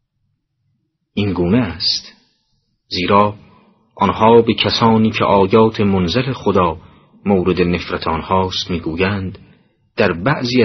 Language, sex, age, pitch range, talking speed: Persian, male, 30-49, 95-120 Hz, 95 wpm